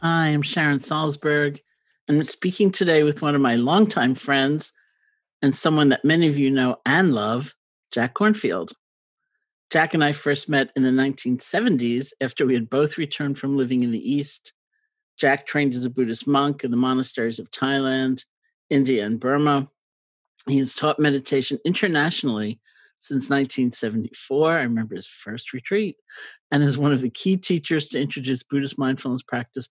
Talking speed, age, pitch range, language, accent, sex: 165 wpm, 50-69, 130-155 Hz, English, American, male